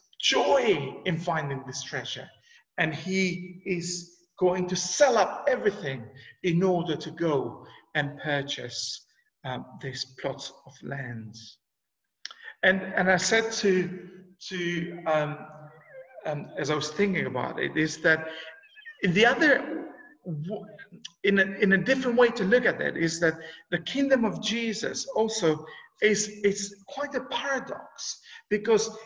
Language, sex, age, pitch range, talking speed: English, male, 50-69, 165-220 Hz, 135 wpm